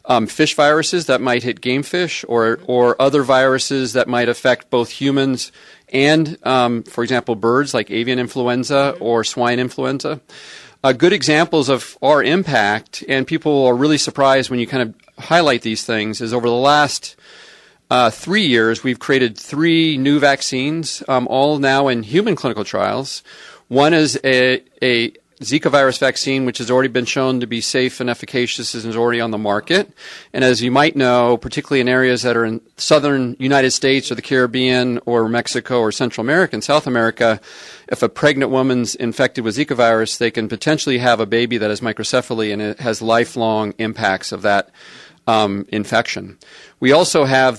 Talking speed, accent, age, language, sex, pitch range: 180 wpm, American, 40-59, English, male, 120-140 Hz